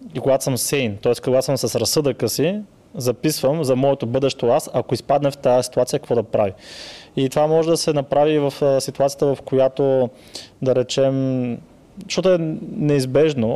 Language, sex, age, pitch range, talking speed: Bulgarian, male, 20-39, 115-140 Hz, 170 wpm